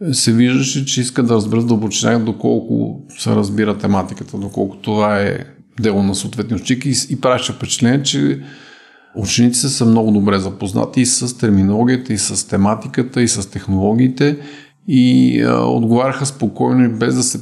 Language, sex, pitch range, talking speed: Bulgarian, male, 100-125 Hz, 150 wpm